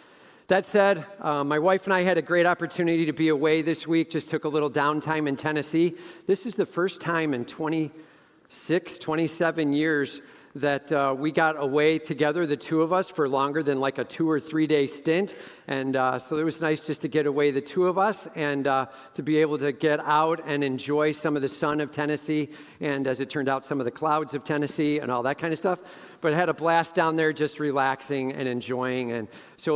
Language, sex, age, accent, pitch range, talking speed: English, male, 50-69, American, 135-160 Hz, 225 wpm